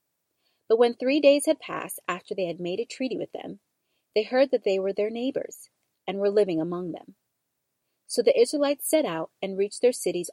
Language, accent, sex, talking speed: English, American, female, 205 wpm